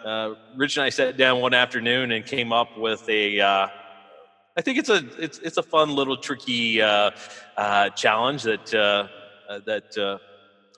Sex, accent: male, American